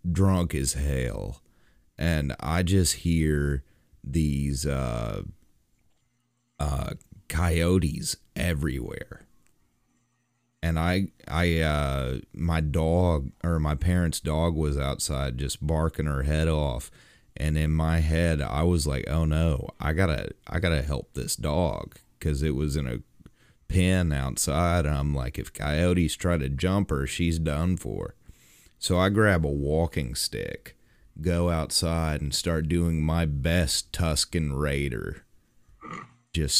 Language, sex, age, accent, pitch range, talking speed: English, male, 30-49, American, 70-90 Hz, 130 wpm